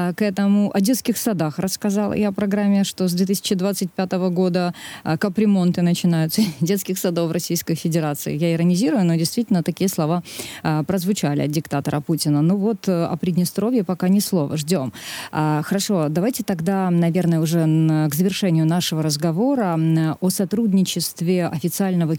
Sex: female